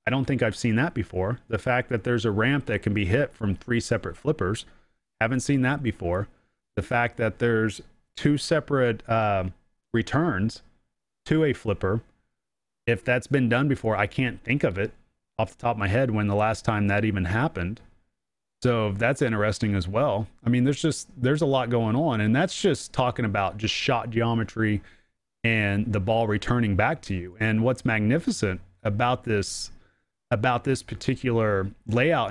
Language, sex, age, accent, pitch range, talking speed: English, male, 30-49, American, 105-130 Hz, 180 wpm